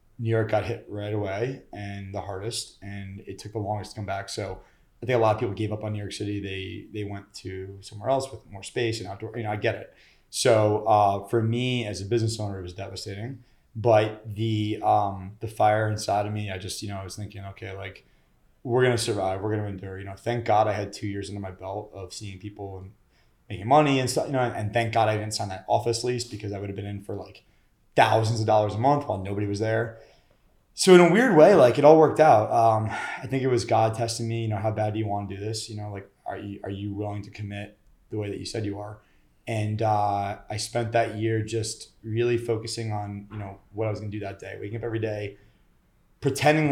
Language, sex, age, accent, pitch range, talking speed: English, male, 20-39, American, 100-115 Hz, 255 wpm